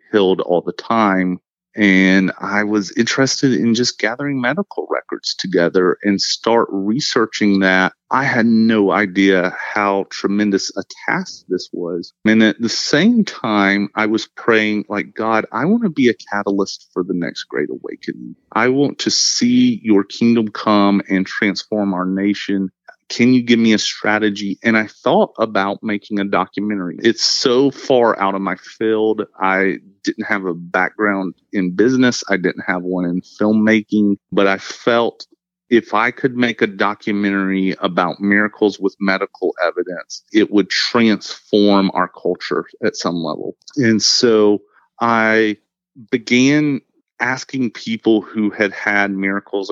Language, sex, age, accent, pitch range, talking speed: English, male, 30-49, American, 95-115 Hz, 150 wpm